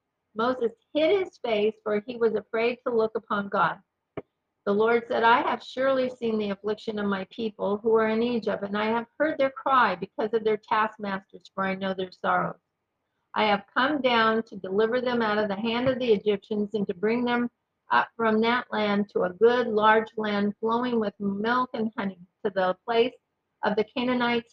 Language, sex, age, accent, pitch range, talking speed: English, female, 50-69, American, 210-245 Hz, 200 wpm